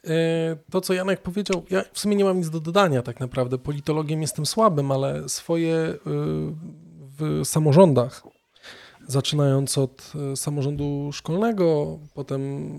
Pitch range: 140-170 Hz